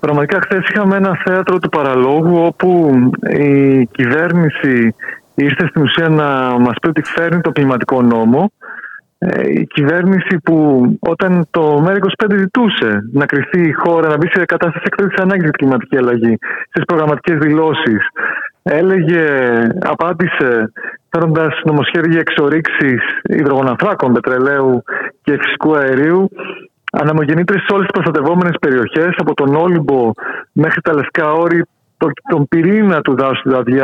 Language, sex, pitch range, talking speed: Greek, male, 140-180 Hz, 130 wpm